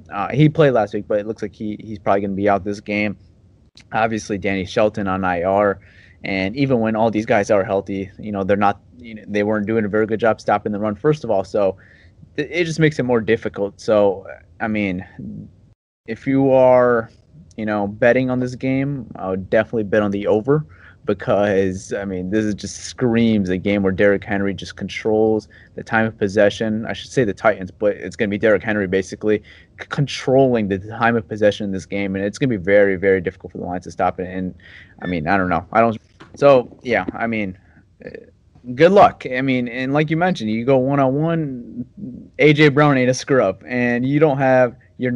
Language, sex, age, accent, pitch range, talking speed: English, male, 30-49, American, 100-125 Hz, 215 wpm